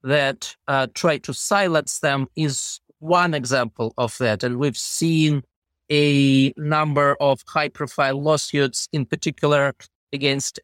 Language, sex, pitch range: English, male, 130-160 Hz